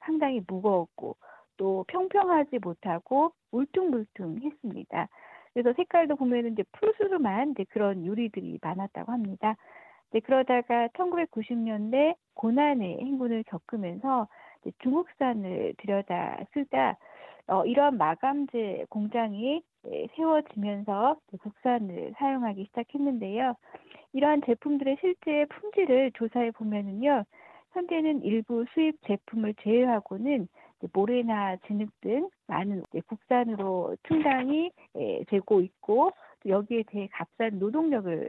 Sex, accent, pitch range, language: female, native, 210-295 Hz, Korean